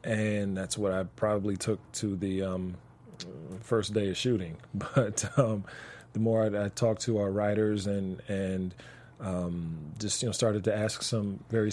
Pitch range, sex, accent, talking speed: 100-120 Hz, male, American, 175 wpm